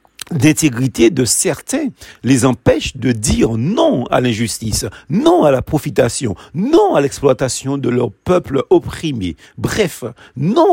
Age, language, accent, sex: 50-69, French, French, male